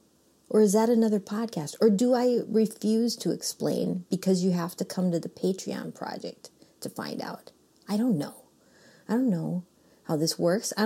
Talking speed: 180 wpm